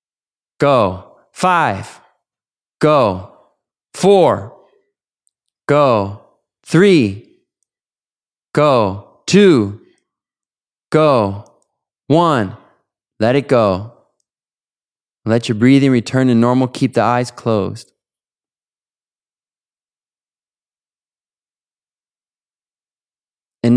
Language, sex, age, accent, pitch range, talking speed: English, male, 20-39, American, 100-125 Hz, 60 wpm